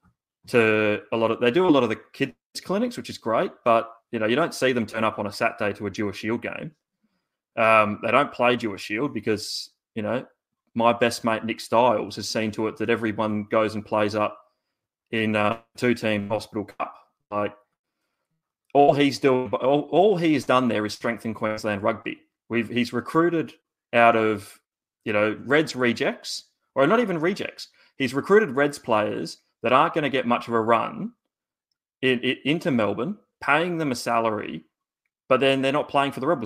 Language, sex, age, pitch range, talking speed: English, male, 20-39, 110-140 Hz, 195 wpm